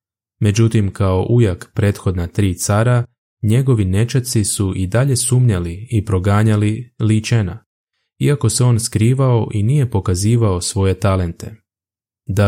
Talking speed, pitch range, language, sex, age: 120 wpm, 95-115 Hz, Croatian, male, 20-39